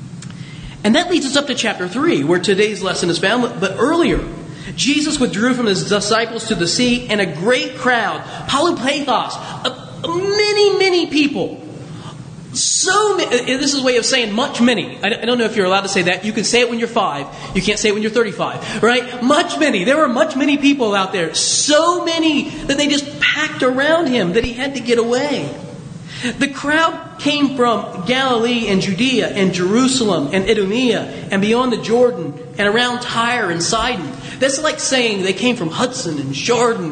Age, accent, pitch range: 30-49, American, 175-265 Hz